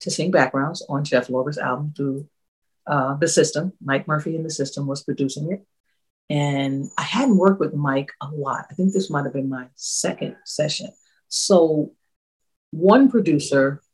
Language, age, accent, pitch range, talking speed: English, 40-59, American, 145-220 Hz, 165 wpm